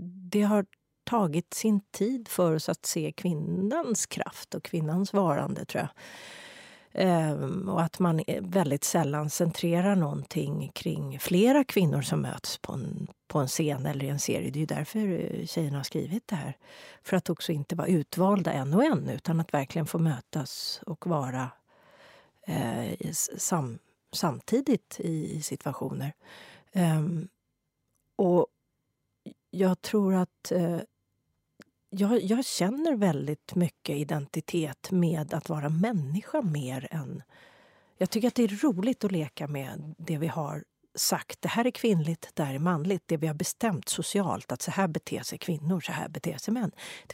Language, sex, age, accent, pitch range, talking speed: Swedish, female, 40-59, native, 155-195 Hz, 150 wpm